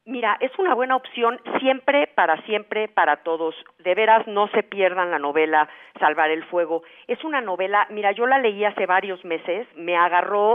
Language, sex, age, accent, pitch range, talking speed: Spanish, female, 50-69, Mexican, 170-210 Hz, 180 wpm